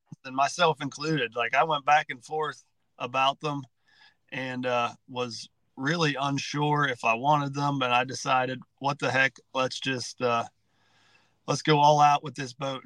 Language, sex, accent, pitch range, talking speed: English, male, American, 130-155 Hz, 170 wpm